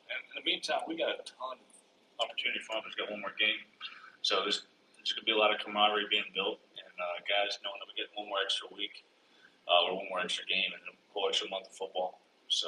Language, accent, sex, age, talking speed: English, American, male, 30-49, 250 wpm